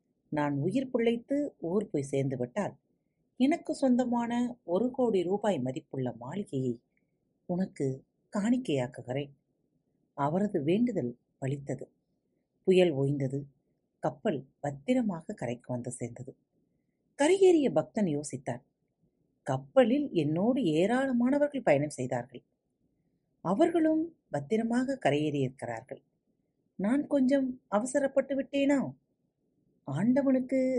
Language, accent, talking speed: Tamil, native, 80 wpm